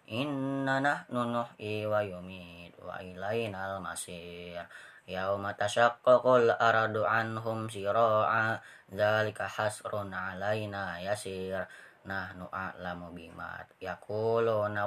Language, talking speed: Indonesian, 75 wpm